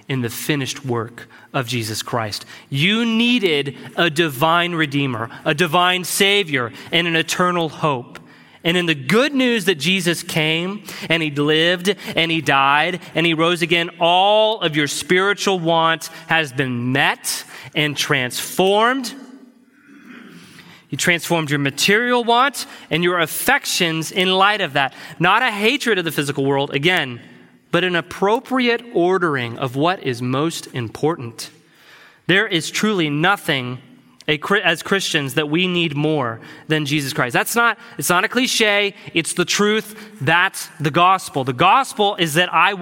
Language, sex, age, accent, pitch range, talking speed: English, male, 30-49, American, 150-200 Hz, 150 wpm